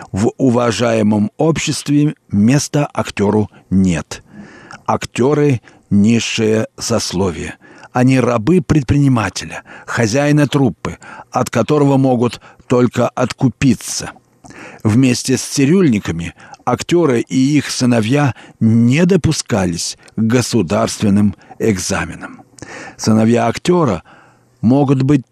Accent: native